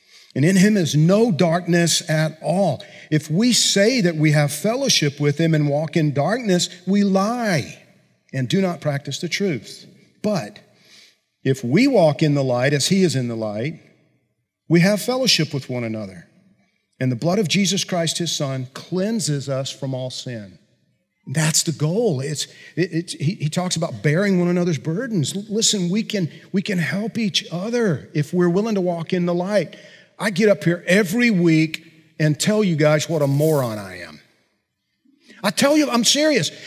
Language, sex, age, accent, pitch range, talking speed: English, male, 50-69, American, 150-205 Hz, 180 wpm